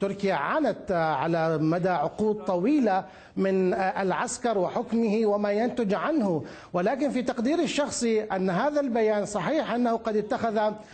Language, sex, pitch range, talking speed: Arabic, male, 195-240 Hz, 125 wpm